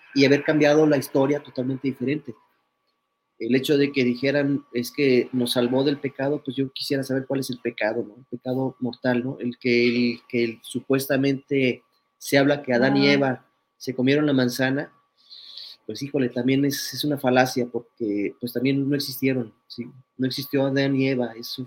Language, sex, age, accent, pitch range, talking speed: Spanish, male, 30-49, Mexican, 120-140 Hz, 185 wpm